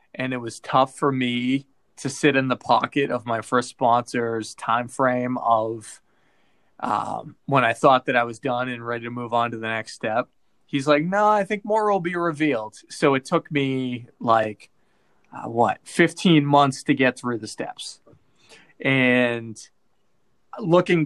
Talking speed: 170 wpm